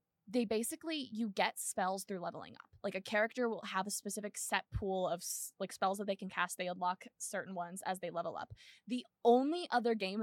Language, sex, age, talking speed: English, female, 20-39, 210 wpm